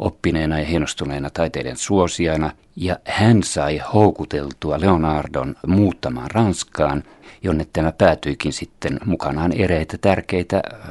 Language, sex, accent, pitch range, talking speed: Finnish, male, native, 75-90 Hz, 105 wpm